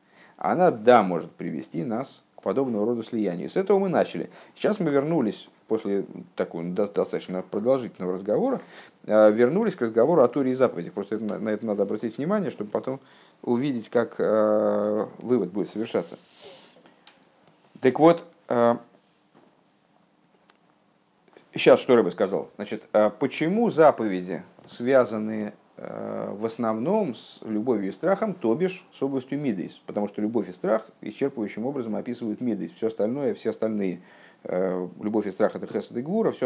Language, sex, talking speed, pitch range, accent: Russian, male, 140 wpm, 105-140 Hz, native